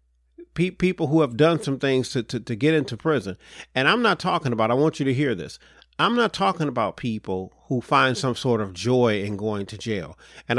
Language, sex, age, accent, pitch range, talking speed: English, male, 40-59, American, 100-145 Hz, 220 wpm